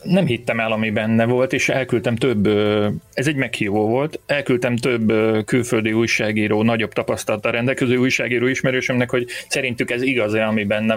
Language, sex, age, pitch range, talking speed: Hungarian, male, 30-49, 105-125 Hz, 160 wpm